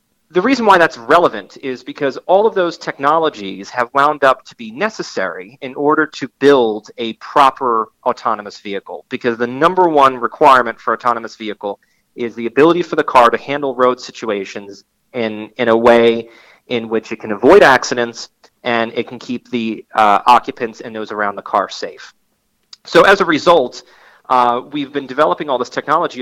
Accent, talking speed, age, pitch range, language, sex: American, 175 wpm, 30-49, 115-140 Hz, English, male